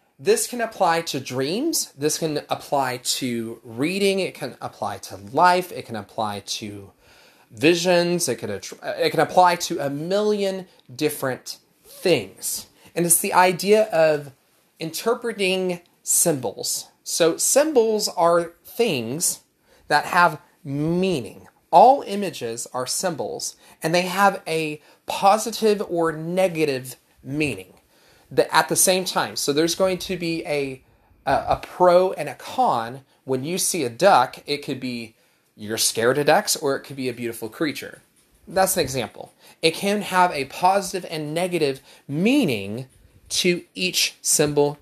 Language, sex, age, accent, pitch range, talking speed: English, male, 30-49, American, 135-190 Hz, 140 wpm